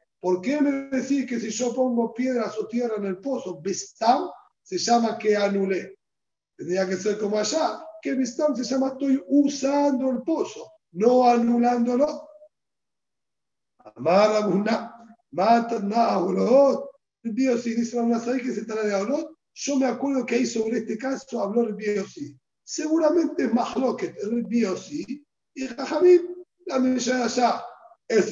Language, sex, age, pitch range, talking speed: Spanish, male, 50-69, 215-275 Hz, 135 wpm